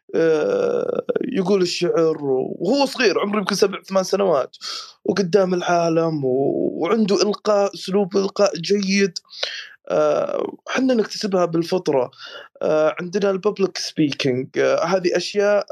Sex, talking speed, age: male, 90 wpm, 20-39